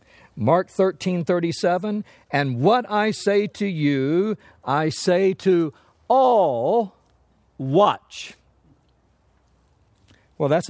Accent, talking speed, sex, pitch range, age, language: American, 95 wpm, male, 120-190 Hz, 60-79, English